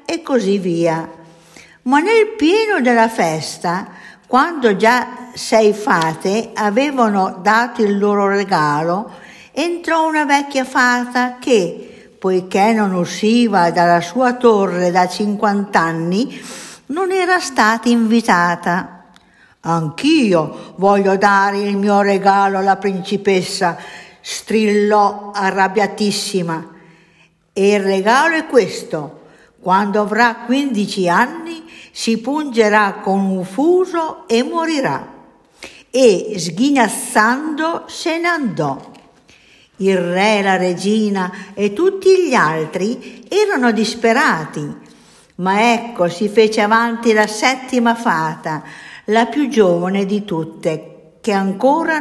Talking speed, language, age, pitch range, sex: 105 wpm, Italian, 50-69, 190-250 Hz, female